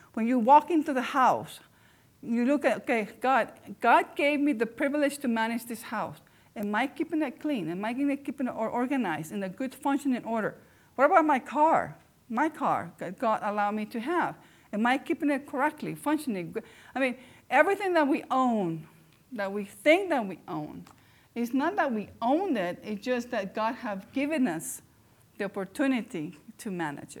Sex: female